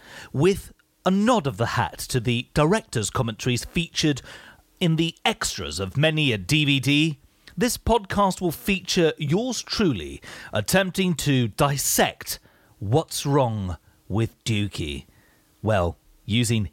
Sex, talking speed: male, 120 wpm